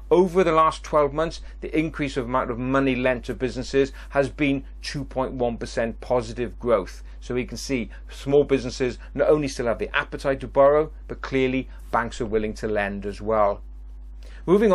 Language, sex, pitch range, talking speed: English, male, 115-145 Hz, 175 wpm